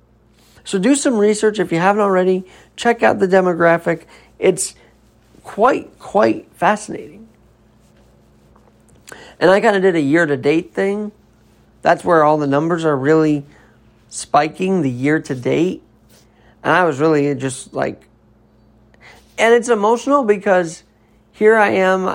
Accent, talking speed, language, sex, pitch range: American, 125 wpm, English, male, 150-205 Hz